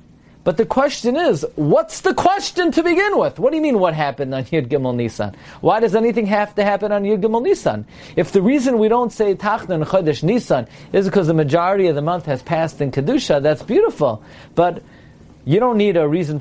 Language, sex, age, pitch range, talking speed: English, male, 40-59, 140-205 Hz, 210 wpm